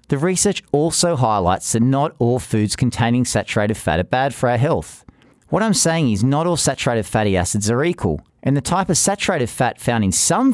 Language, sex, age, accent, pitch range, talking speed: English, male, 40-59, Australian, 105-160 Hz, 205 wpm